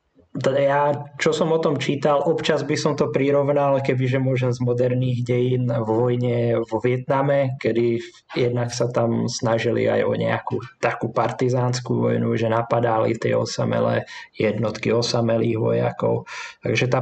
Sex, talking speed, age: male, 140 wpm, 20-39